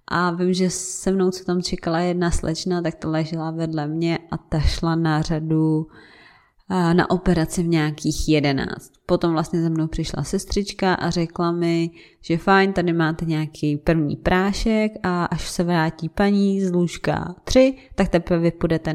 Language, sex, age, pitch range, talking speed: Czech, female, 20-39, 165-215 Hz, 170 wpm